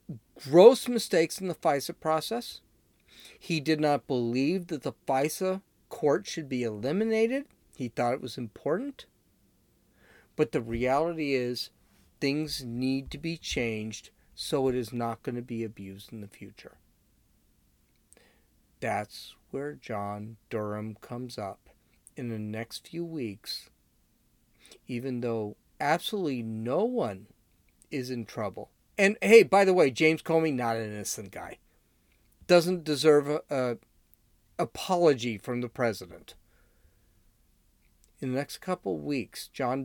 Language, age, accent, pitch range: English, 40-59, American, 115-155 Hz